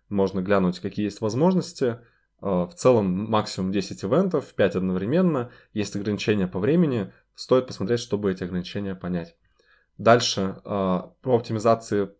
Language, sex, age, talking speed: Russian, male, 20-39, 125 wpm